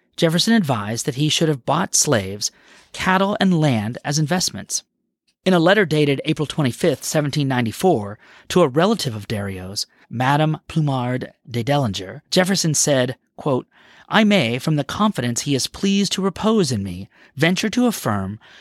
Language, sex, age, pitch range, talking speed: English, male, 40-59, 130-190 Hz, 150 wpm